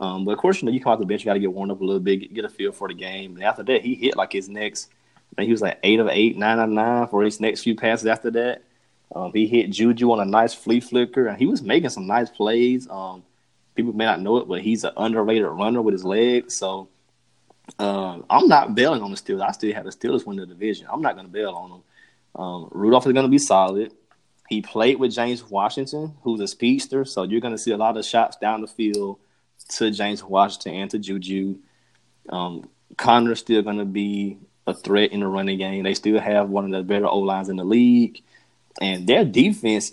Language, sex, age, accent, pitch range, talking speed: English, male, 20-39, American, 95-115 Hz, 250 wpm